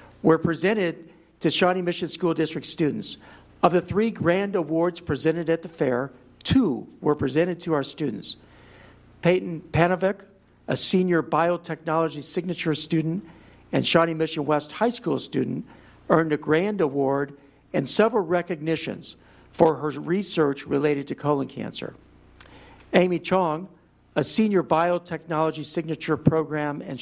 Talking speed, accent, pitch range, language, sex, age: 130 wpm, American, 145-175 Hz, English, male, 60-79